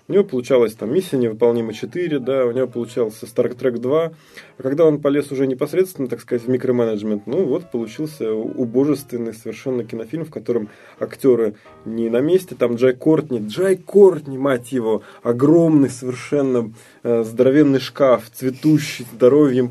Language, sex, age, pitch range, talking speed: Russian, male, 20-39, 120-145 Hz, 150 wpm